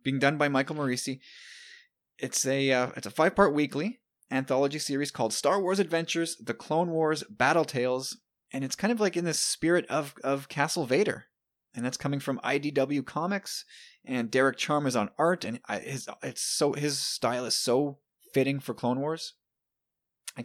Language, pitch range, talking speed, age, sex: English, 135-175 Hz, 180 wpm, 30-49, male